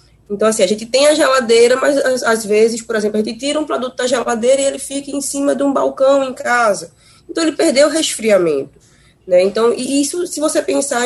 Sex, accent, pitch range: female, Brazilian, 200-280 Hz